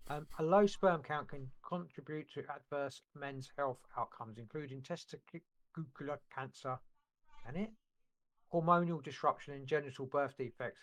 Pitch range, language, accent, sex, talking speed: 130-150 Hz, English, British, male, 125 wpm